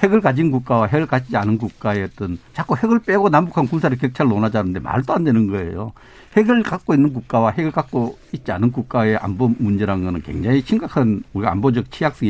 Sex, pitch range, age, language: male, 105-155 Hz, 60-79, Korean